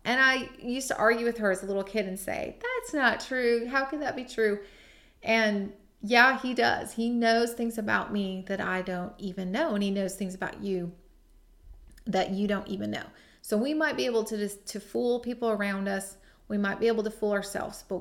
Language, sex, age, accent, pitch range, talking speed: English, female, 30-49, American, 195-225 Hz, 220 wpm